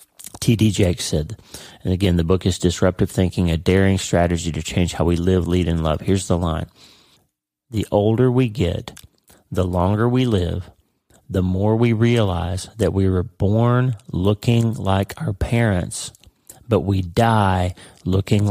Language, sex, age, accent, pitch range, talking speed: English, male, 30-49, American, 90-110 Hz, 155 wpm